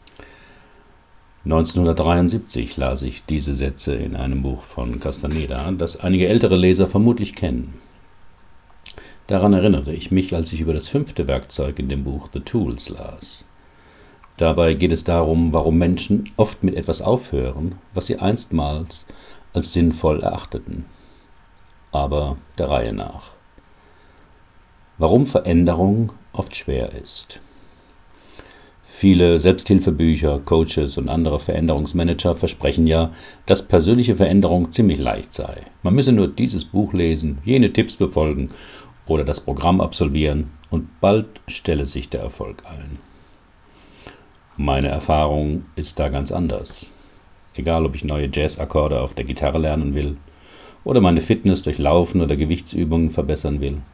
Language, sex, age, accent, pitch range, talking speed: German, male, 60-79, German, 70-95 Hz, 130 wpm